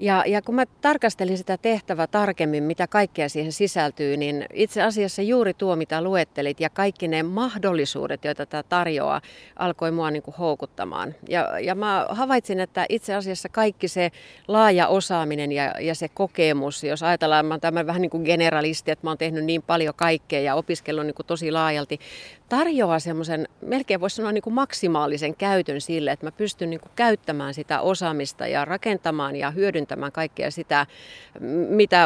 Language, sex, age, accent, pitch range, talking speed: Finnish, female, 30-49, native, 155-195 Hz, 165 wpm